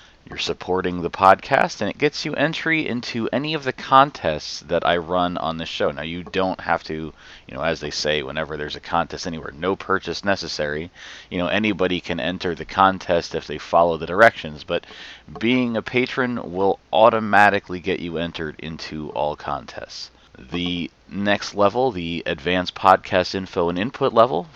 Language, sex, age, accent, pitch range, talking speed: English, male, 30-49, American, 85-110 Hz, 175 wpm